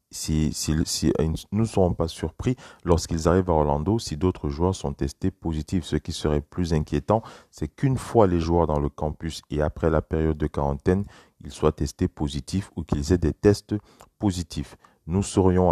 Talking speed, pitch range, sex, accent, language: 185 wpm, 75-95 Hz, male, French, French